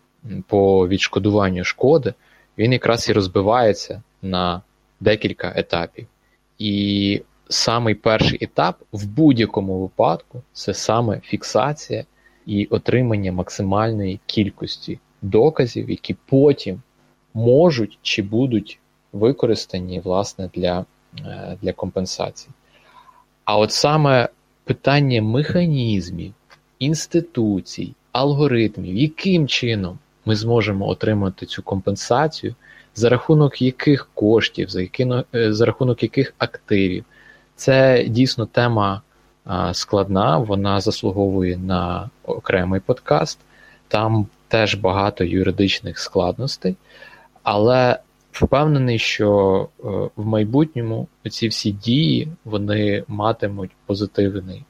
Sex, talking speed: male, 90 wpm